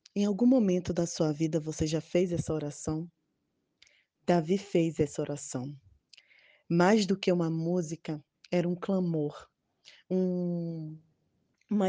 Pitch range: 160-195 Hz